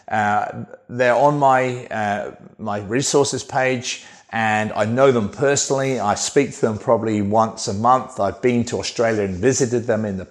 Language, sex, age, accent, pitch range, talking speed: English, male, 40-59, British, 105-130 Hz, 175 wpm